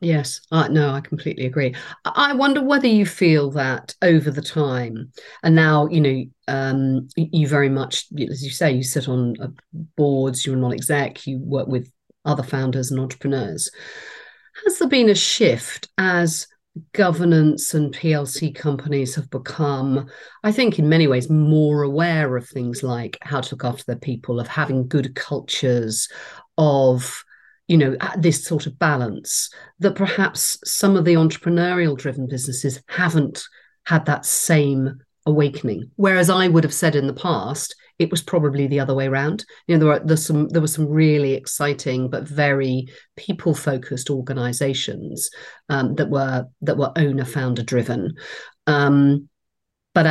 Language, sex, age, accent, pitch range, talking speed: English, female, 50-69, British, 135-165 Hz, 155 wpm